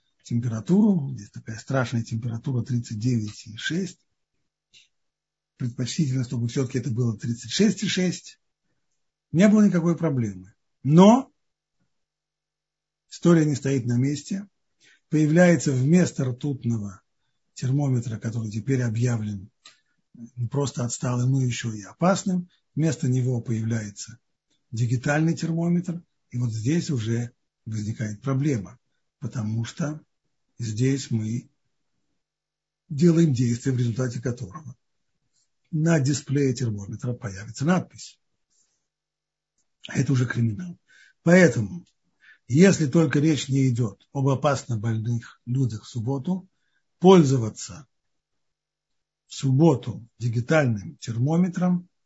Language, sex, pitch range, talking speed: Russian, male, 115-155 Hz, 90 wpm